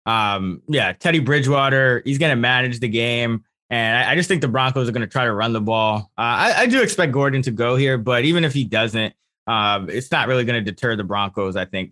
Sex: male